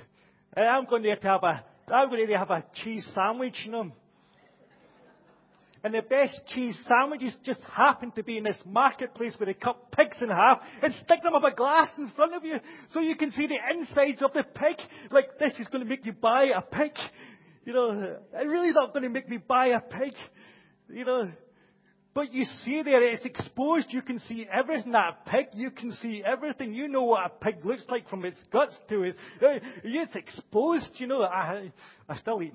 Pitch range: 155-250 Hz